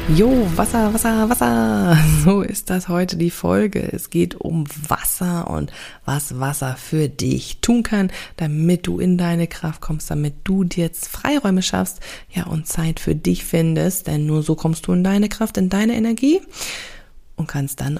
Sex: female